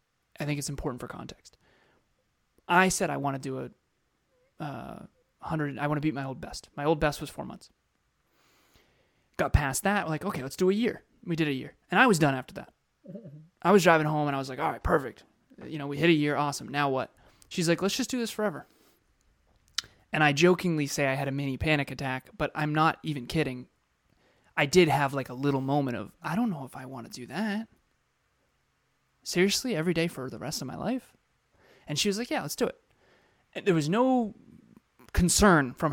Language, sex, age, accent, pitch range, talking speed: English, male, 20-39, American, 145-185 Hz, 210 wpm